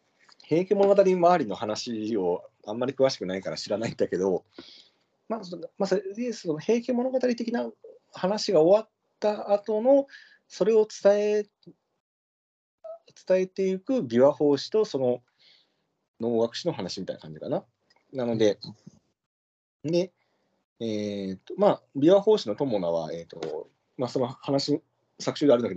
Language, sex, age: Japanese, male, 40-59